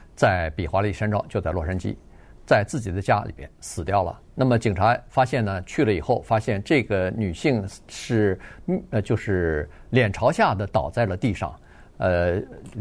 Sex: male